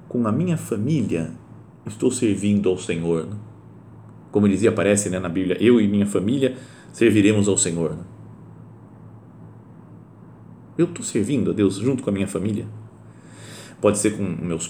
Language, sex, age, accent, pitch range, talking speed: Portuguese, male, 40-59, Brazilian, 100-120 Hz, 145 wpm